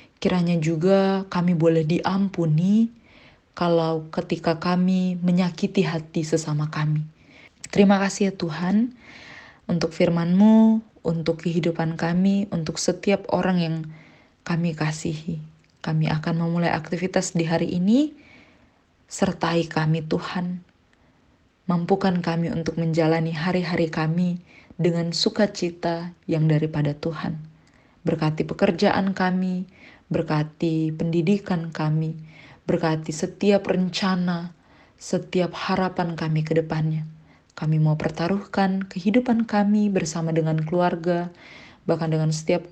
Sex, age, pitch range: female, 20-39, 160-185 Hz